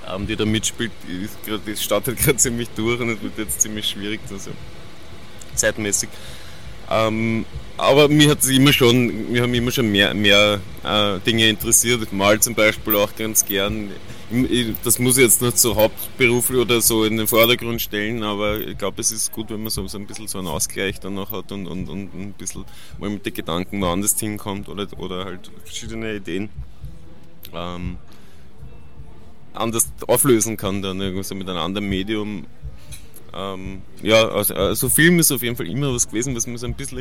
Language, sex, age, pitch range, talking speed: German, male, 20-39, 100-115 Hz, 180 wpm